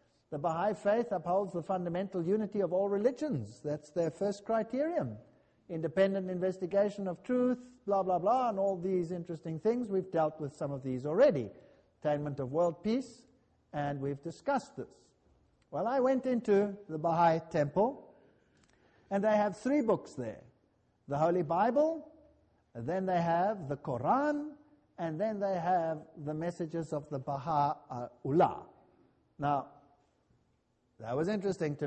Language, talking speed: English, 145 wpm